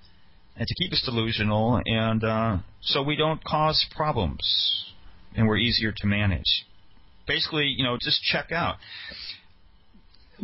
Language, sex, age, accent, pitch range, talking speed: English, male, 40-59, American, 105-150 Hz, 140 wpm